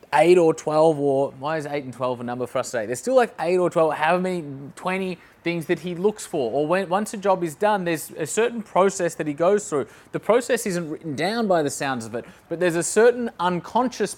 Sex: male